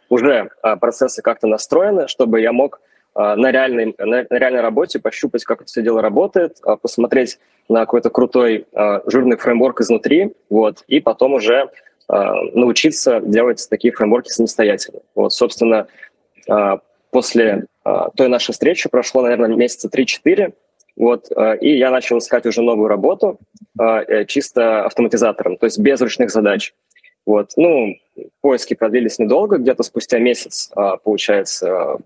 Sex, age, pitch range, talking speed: male, 20-39, 110-130 Hz, 125 wpm